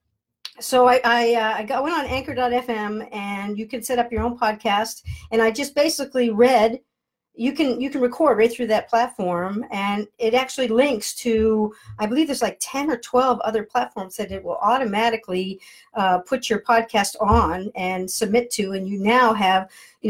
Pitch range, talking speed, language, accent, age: 200-245 Hz, 185 wpm, English, American, 50-69